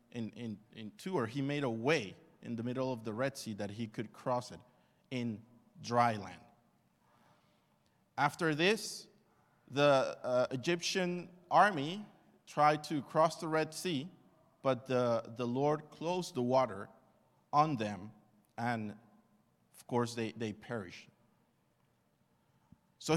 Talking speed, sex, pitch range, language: 130 wpm, male, 120-160 Hz, English